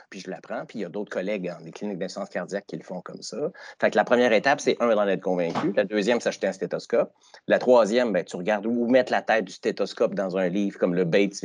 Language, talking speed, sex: French, 275 wpm, male